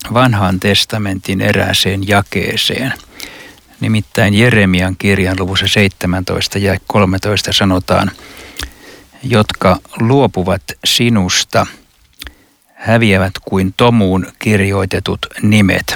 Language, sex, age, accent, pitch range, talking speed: Finnish, male, 60-79, native, 95-115 Hz, 75 wpm